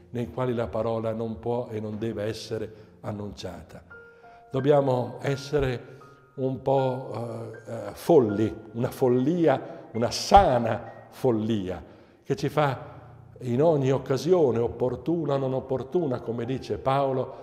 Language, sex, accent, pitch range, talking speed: Italian, male, native, 115-140 Hz, 125 wpm